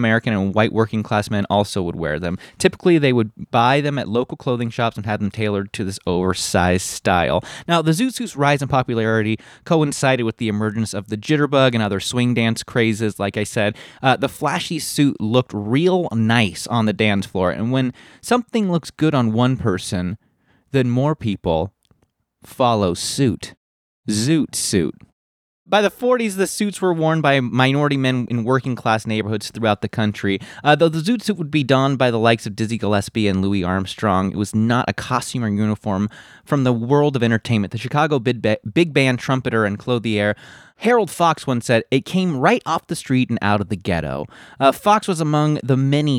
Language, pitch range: English, 105-145 Hz